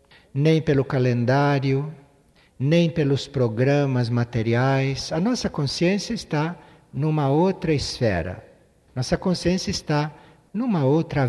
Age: 60-79